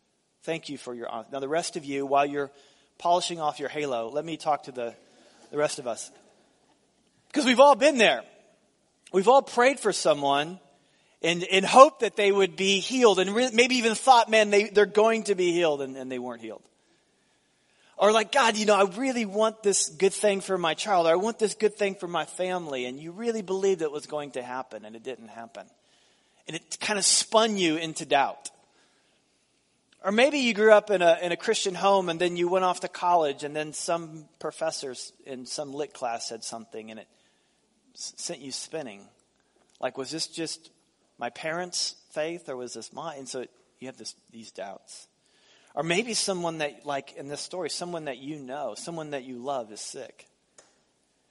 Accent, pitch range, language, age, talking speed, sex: American, 140-200 Hz, English, 40-59, 200 wpm, male